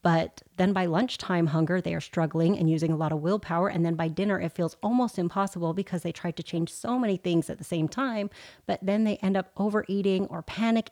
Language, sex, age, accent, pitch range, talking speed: English, female, 30-49, American, 170-205 Hz, 230 wpm